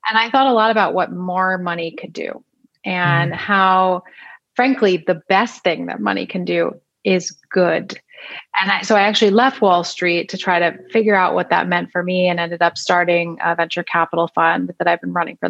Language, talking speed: English, 210 wpm